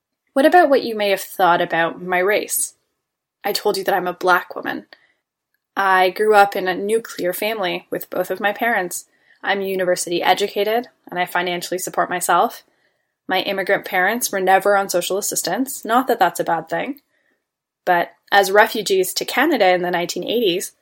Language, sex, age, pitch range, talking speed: English, female, 10-29, 180-230 Hz, 175 wpm